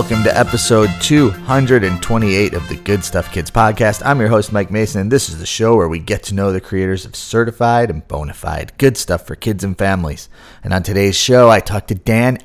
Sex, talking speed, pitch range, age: male, 220 wpm, 85-115 Hz, 30-49